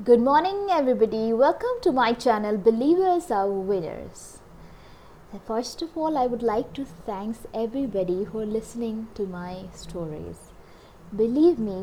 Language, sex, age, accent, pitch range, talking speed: English, female, 20-39, Indian, 195-275 Hz, 135 wpm